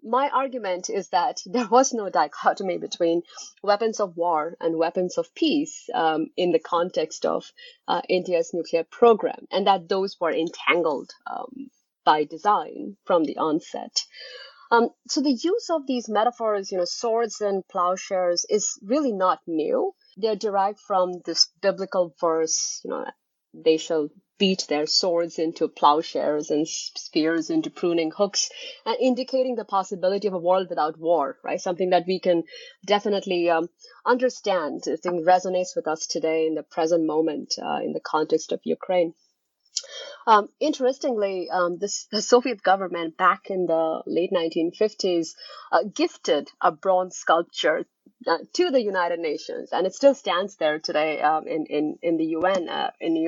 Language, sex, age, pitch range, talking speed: English, female, 30-49, 170-250 Hz, 160 wpm